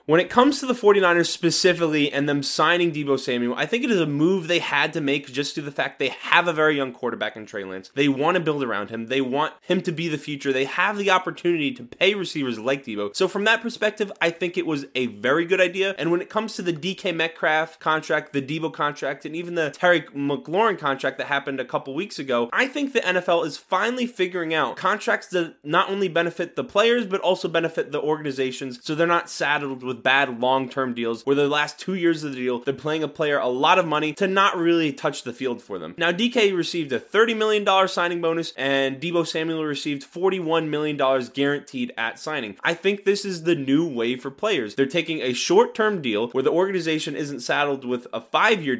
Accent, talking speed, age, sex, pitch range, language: American, 225 wpm, 20-39, male, 135-185 Hz, English